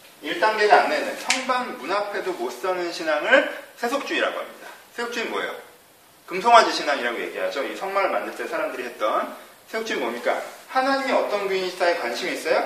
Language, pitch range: Korean, 170-240 Hz